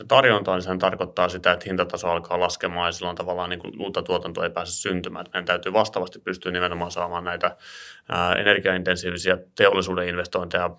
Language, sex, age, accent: Finnish, male, 30-49, native